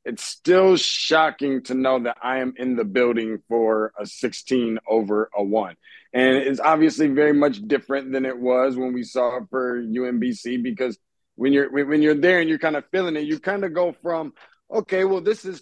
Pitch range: 120-150 Hz